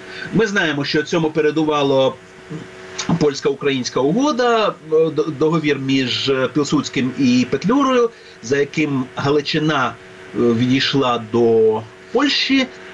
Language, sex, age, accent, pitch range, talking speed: Ukrainian, male, 40-59, native, 135-195 Hz, 85 wpm